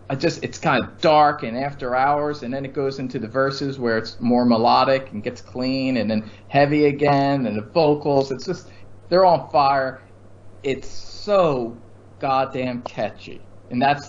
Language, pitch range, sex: English, 110-155 Hz, male